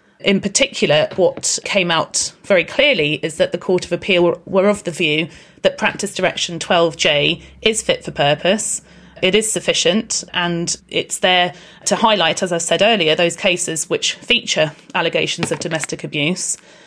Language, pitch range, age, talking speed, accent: English, 170-210 Hz, 30-49, 160 wpm, British